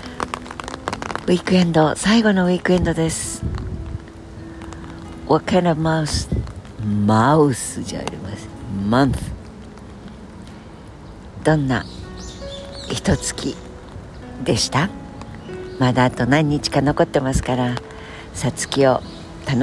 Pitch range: 105-155 Hz